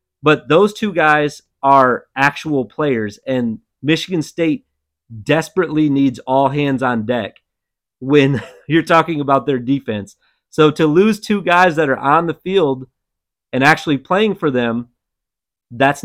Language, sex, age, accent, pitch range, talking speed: English, male, 30-49, American, 130-160 Hz, 140 wpm